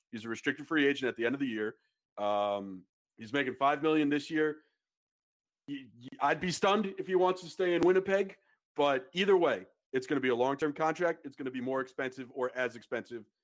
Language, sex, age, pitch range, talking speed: English, male, 40-59, 140-185 Hz, 220 wpm